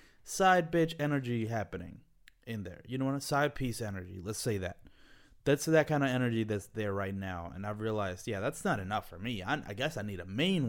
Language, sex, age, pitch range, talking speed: English, male, 20-39, 105-135 Hz, 230 wpm